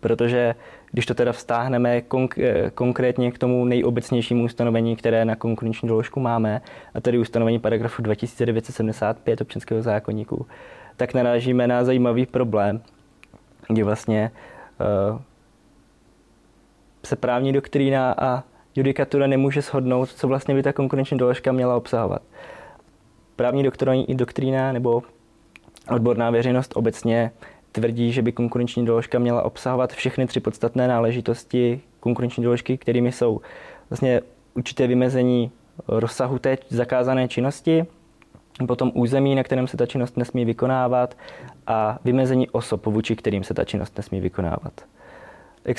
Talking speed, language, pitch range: 125 wpm, Czech, 115-130 Hz